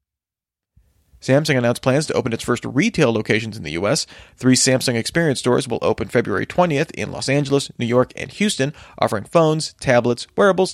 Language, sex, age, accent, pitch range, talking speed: English, male, 30-49, American, 120-150 Hz, 175 wpm